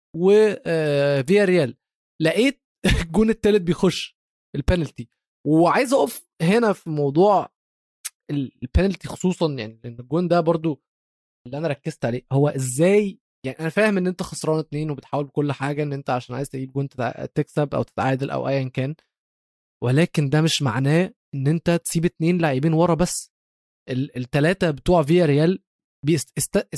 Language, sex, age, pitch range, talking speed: Arabic, male, 20-39, 140-180 Hz, 145 wpm